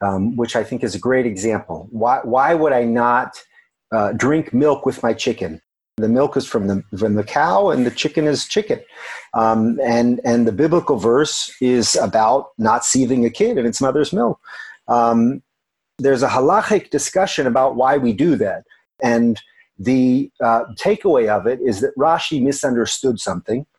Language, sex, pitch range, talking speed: English, male, 120-165 Hz, 175 wpm